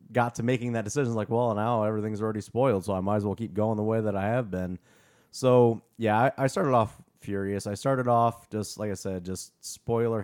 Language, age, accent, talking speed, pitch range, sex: English, 30-49, American, 235 wpm, 105-135 Hz, male